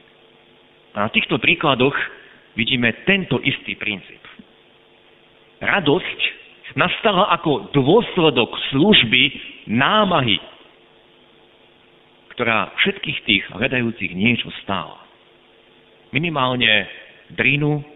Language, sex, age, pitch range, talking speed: Slovak, male, 50-69, 110-180 Hz, 75 wpm